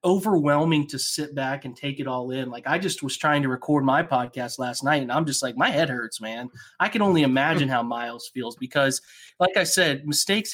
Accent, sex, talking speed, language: American, male, 230 wpm, English